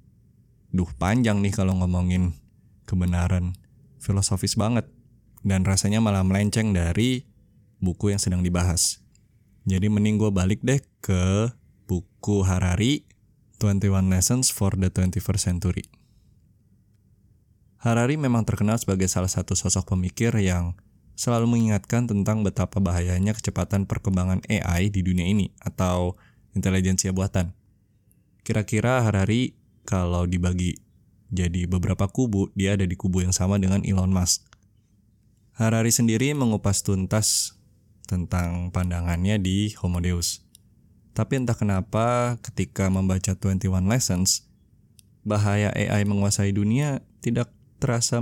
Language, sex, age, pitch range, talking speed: Indonesian, male, 20-39, 95-110 Hz, 115 wpm